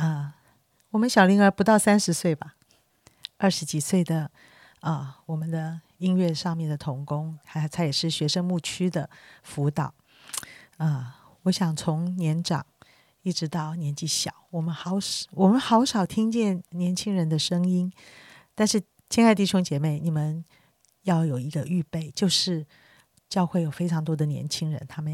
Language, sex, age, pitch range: Chinese, female, 40-59, 150-185 Hz